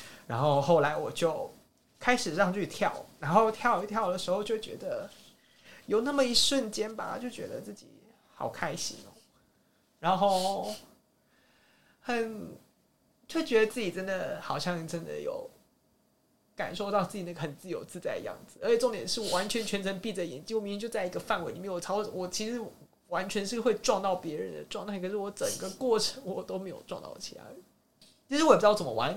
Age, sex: 30-49, male